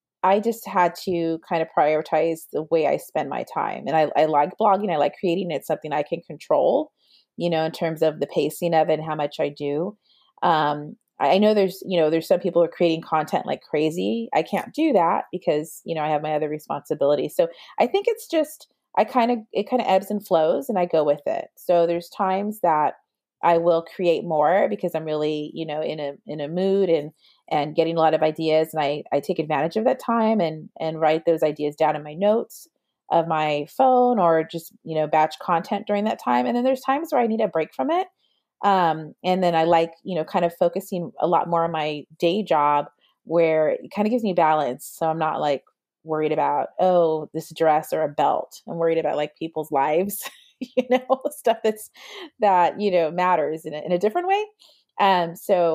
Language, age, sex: English, 30-49, female